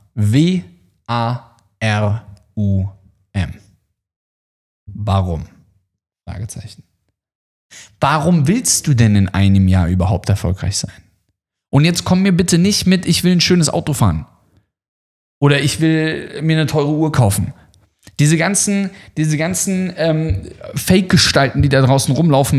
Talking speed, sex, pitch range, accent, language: 115 wpm, male, 100-160 Hz, German, German